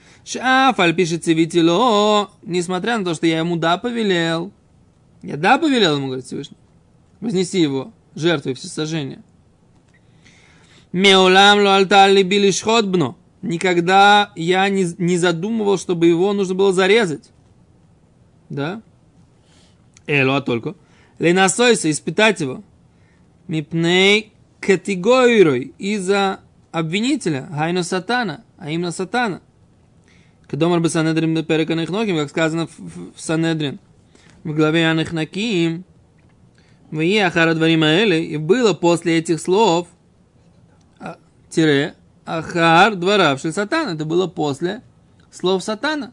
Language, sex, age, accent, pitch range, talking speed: Russian, male, 20-39, native, 160-195 Hz, 100 wpm